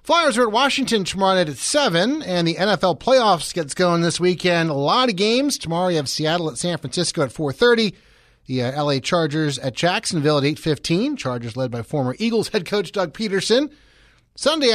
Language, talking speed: English, 190 wpm